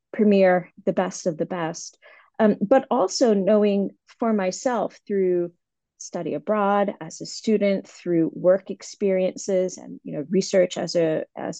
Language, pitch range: English, 170-210 Hz